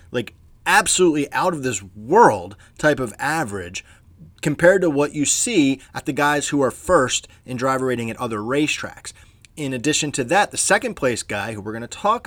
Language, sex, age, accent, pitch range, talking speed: English, male, 30-49, American, 110-165 Hz, 190 wpm